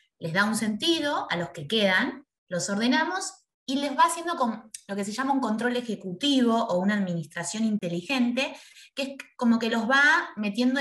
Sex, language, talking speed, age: female, Spanish, 180 wpm, 20-39